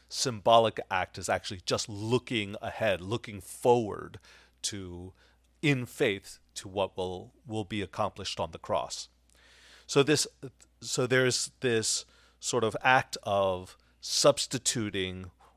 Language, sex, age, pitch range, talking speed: English, male, 40-59, 85-125 Hz, 120 wpm